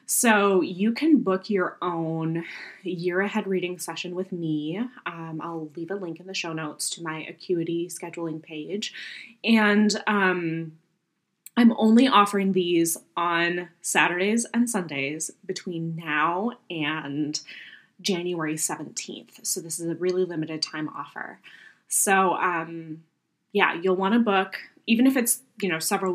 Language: English